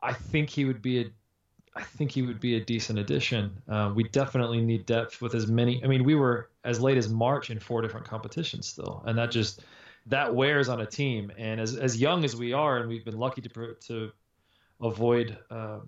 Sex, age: male, 20-39